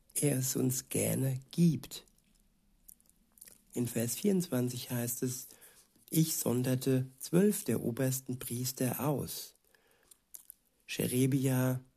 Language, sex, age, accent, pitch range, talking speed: German, male, 60-79, German, 130-145 Hz, 90 wpm